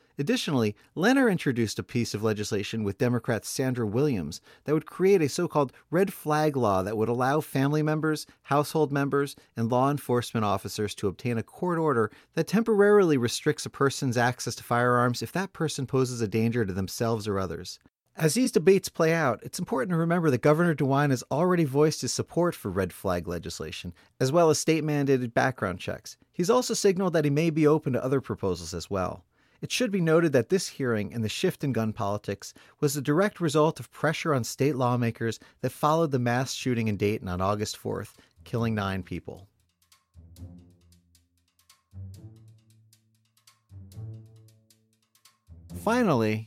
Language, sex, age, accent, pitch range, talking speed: English, male, 30-49, American, 110-150 Hz, 165 wpm